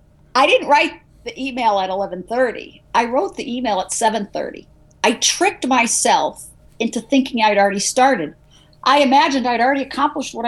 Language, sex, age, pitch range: English, female, 50-69, 195-260 Hz